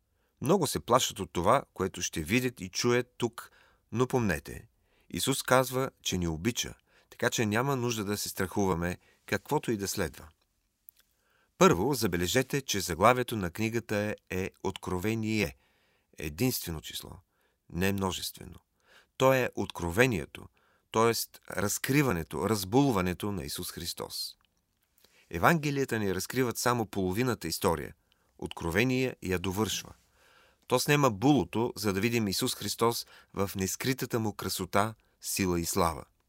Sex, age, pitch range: male, 40-59, 95-125 Hz